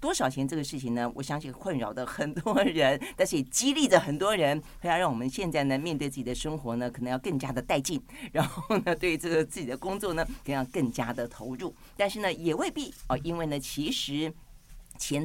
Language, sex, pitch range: Chinese, female, 125-165 Hz